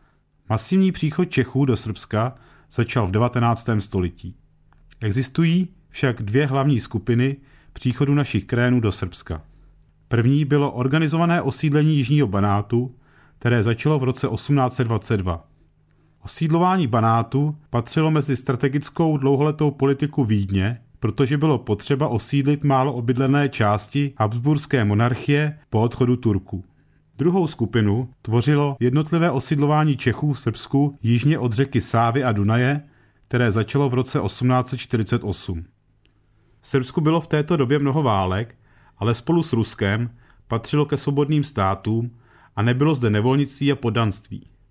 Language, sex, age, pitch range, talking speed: Czech, male, 40-59, 110-145 Hz, 120 wpm